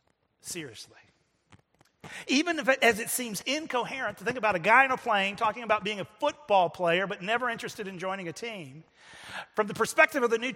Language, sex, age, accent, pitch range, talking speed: English, male, 40-59, American, 170-235 Hz, 190 wpm